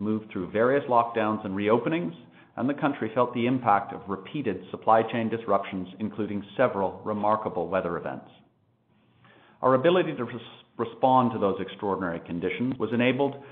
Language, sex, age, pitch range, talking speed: English, male, 40-59, 105-135 Hz, 145 wpm